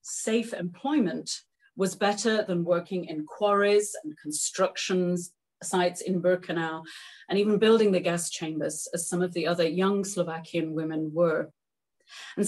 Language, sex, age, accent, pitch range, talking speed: English, female, 30-49, British, 180-240 Hz, 140 wpm